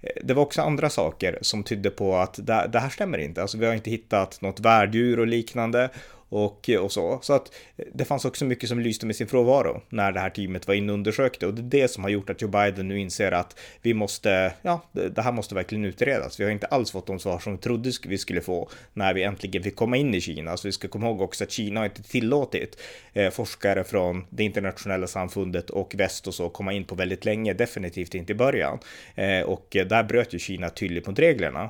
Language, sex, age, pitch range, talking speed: Swedish, male, 30-49, 95-120 Hz, 230 wpm